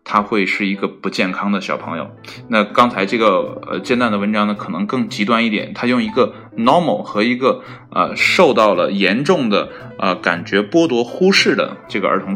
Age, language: 20-39, Chinese